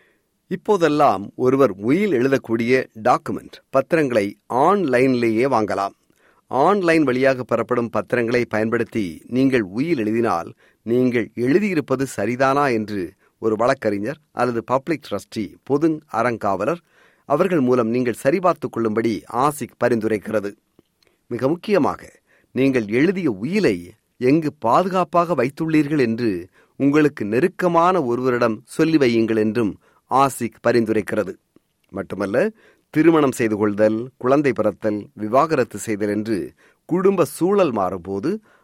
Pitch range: 110-155 Hz